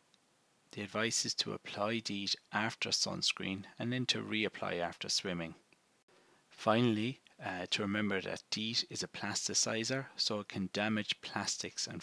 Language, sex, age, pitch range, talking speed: English, male, 30-49, 95-110 Hz, 145 wpm